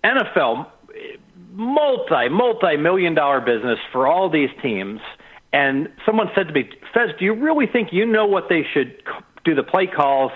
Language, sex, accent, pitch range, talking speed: English, male, American, 140-220 Hz, 150 wpm